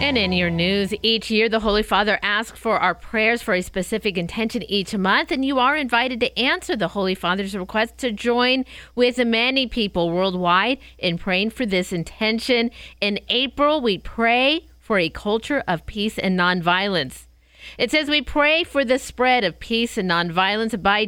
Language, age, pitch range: English, 50-69, 180-235 Hz